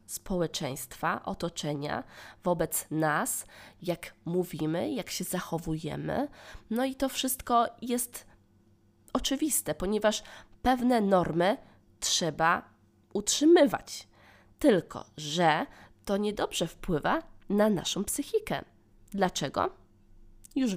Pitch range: 165-245 Hz